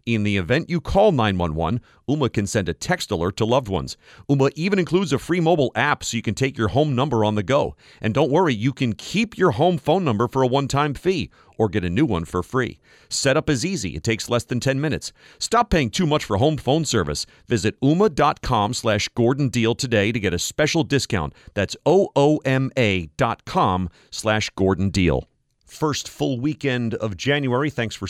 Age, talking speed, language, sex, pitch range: 40-59, 200 wpm, English, male, 100-140 Hz